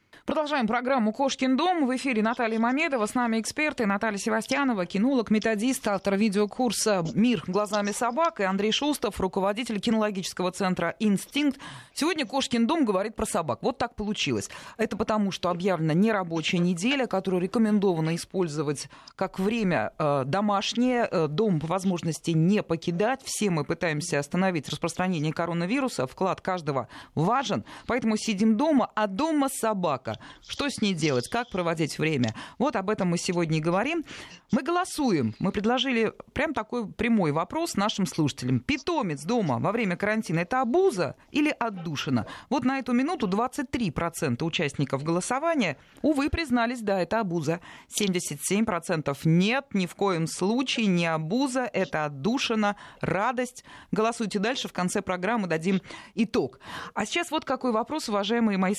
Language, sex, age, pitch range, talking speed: Russian, female, 20-39, 175-245 Hz, 140 wpm